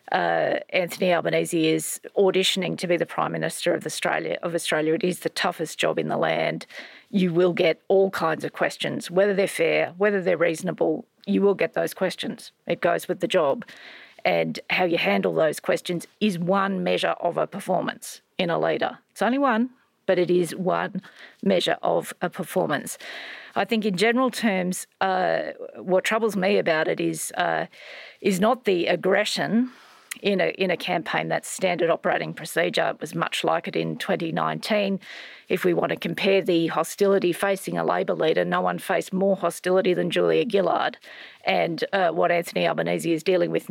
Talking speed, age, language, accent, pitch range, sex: 180 wpm, 40-59, English, Australian, 170-200 Hz, female